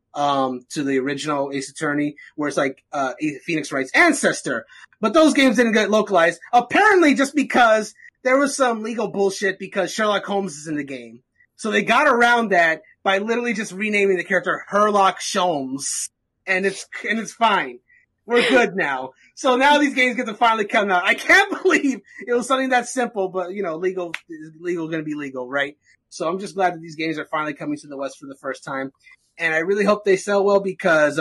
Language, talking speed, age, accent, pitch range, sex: English, 205 wpm, 30-49, American, 145-210 Hz, male